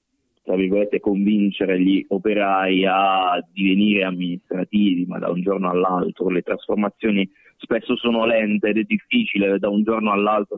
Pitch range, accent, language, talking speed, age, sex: 100-120 Hz, native, Italian, 140 wpm, 30-49, male